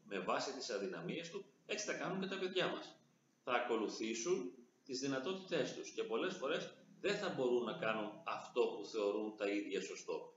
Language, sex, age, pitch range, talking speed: Greek, male, 40-59, 115-190 Hz, 180 wpm